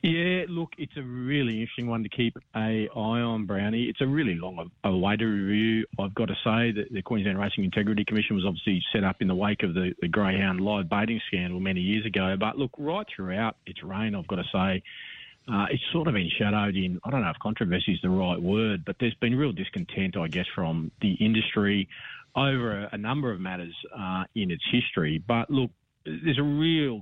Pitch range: 95-120 Hz